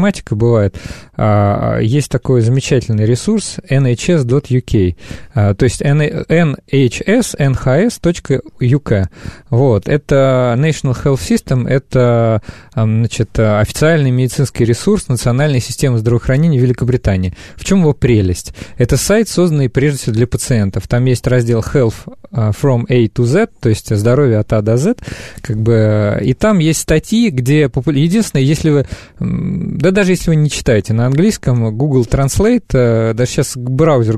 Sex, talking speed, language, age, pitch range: male, 130 wpm, Russian, 20-39, 120-155 Hz